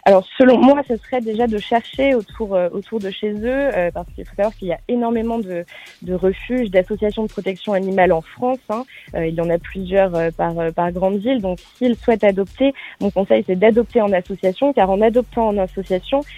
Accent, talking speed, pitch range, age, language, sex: French, 220 wpm, 175-220 Hz, 20-39, French, female